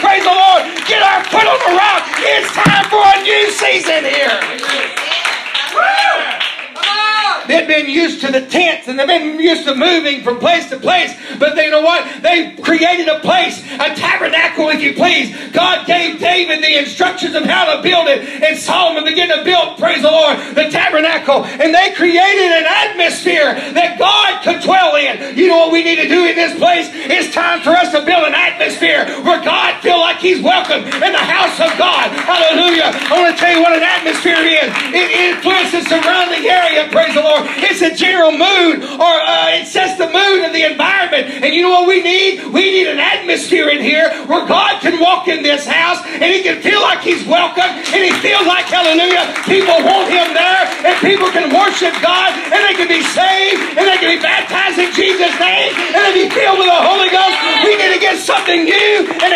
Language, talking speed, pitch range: English, 205 wpm, 320-370 Hz